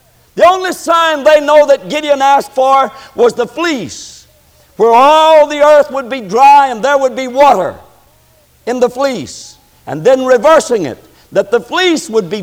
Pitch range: 245-330 Hz